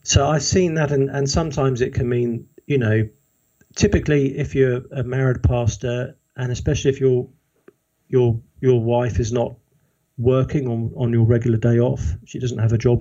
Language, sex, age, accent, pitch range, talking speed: English, male, 50-69, British, 115-135 Hz, 180 wpm